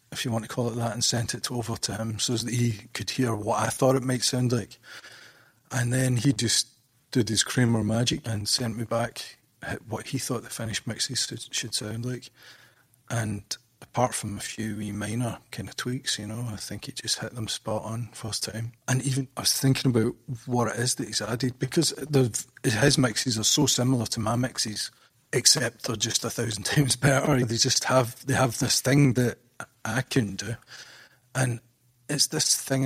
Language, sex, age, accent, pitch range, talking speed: English, male, 30-49, British, 115-130 Hz, 205 wpm